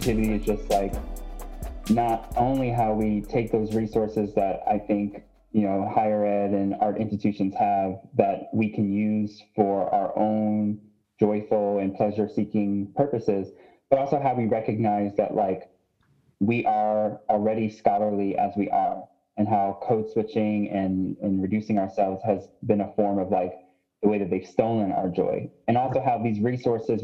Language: English